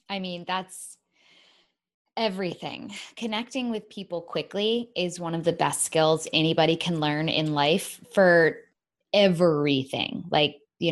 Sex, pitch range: female, 155-185 Hz